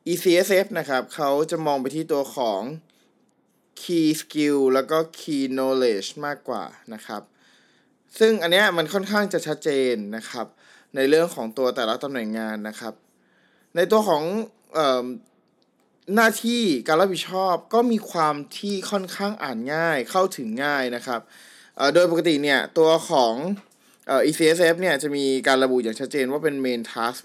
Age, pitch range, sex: 20-39, 140-175 Hz, male